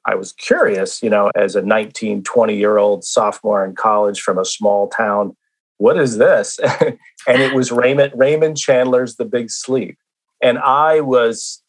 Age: 40-59